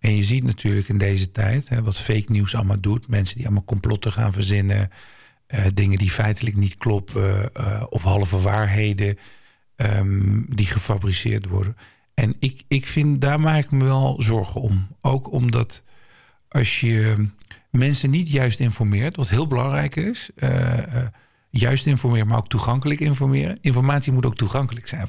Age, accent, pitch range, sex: 50-69, Dutch, 105-130 Hz, male